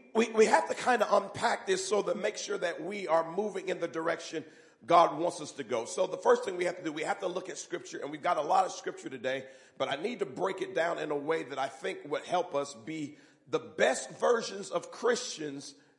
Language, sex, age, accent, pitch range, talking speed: English, male, 40-59, American, 160-255 Hz, 255 wpm